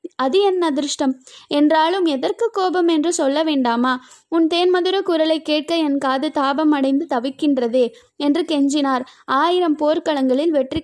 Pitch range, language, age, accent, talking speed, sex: 275-330 Hz, Tamil, 20-39, native, 125 wpm, female